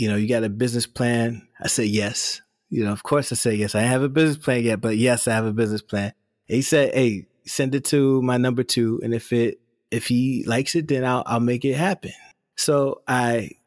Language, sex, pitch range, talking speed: English, male, 105-130 Hz, 240 wpm